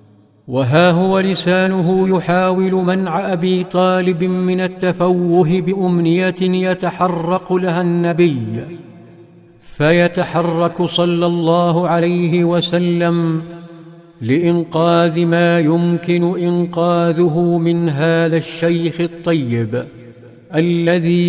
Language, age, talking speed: Arabic, 50-69, 75 wpm